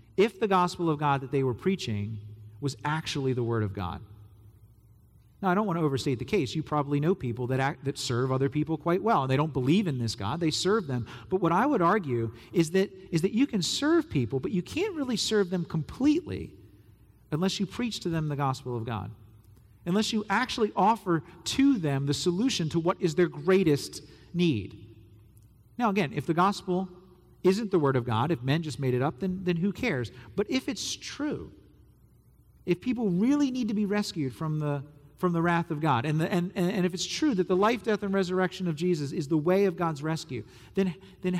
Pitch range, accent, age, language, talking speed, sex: 120-185 Hz, American, 40-59, English, 215 wpm, male